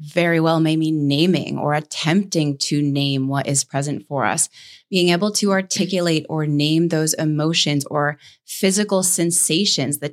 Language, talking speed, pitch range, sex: English, 155 wpm, 155-185 Hz, female